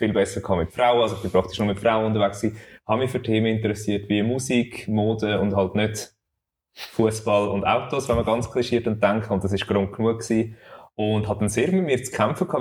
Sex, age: male, 20-39